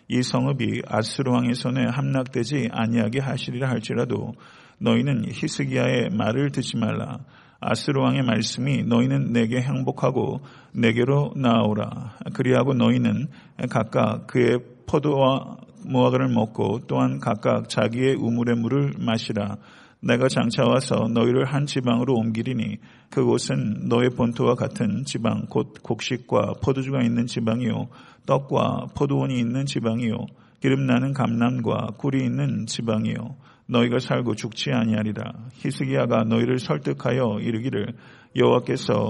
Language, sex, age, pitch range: Korean, male, 50-69, 115-130 Hz